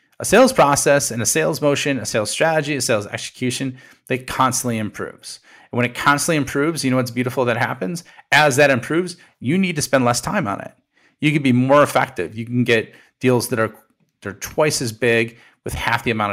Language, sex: English, male